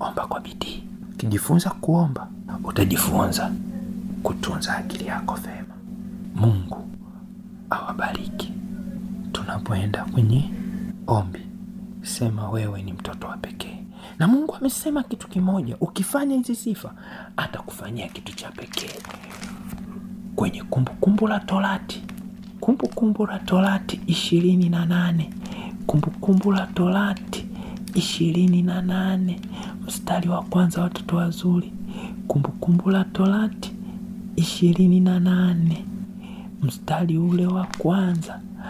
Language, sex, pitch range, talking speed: Swahili, male, 170-210 Hz, 100 wpm